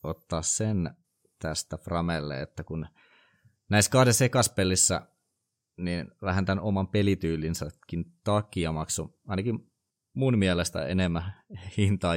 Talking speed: 105 wpm